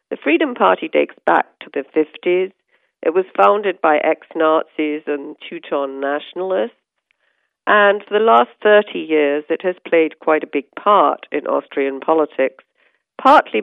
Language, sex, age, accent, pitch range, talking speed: English, female, 50-69, British, 145-180 Hz, 145 wpm